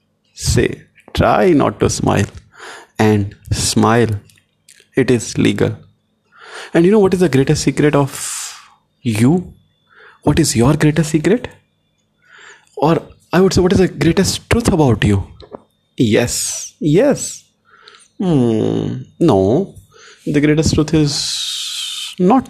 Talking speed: 120 wpm